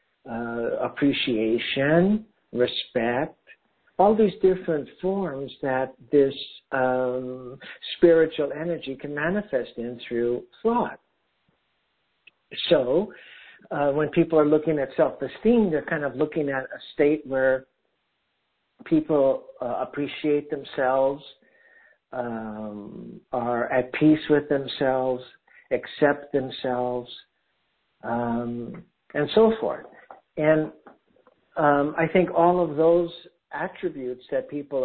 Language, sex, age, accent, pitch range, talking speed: English, male, 60-79, American, 130-170 Hz, 100 wpm